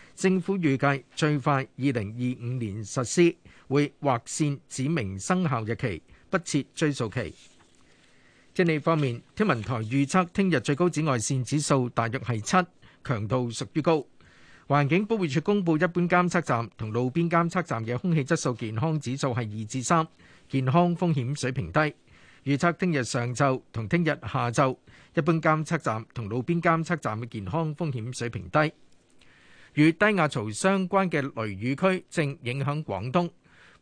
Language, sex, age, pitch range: Chinese, male, 50-69, 120-165 Hz